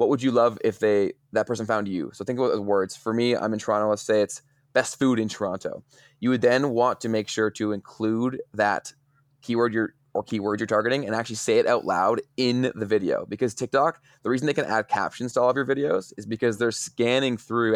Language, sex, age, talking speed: English, male, 20-39, 235 wpm